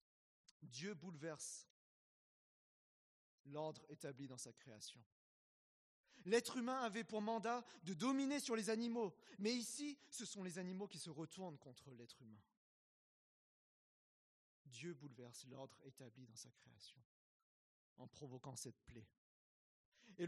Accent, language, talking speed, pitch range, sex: French, French, 120 wpm, 140-210 Hz, male